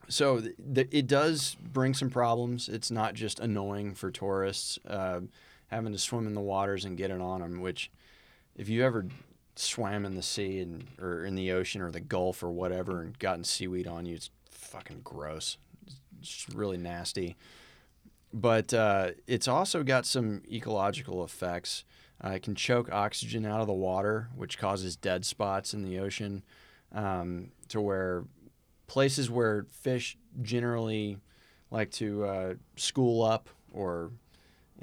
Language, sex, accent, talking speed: English, male, American, 165 wpm